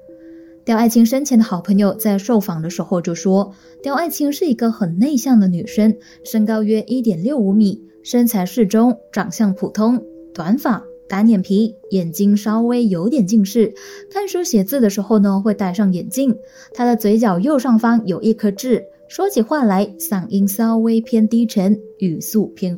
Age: 20-39